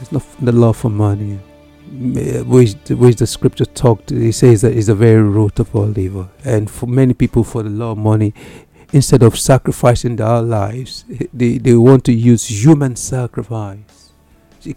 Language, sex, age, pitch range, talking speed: English, male, 60-79, 105-130 Hz, 185 wpm